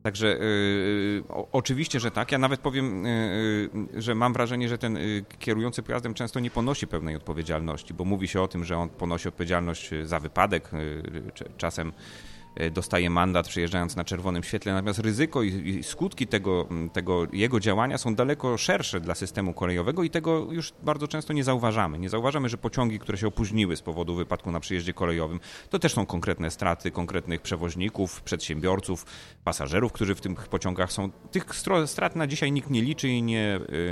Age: 30-49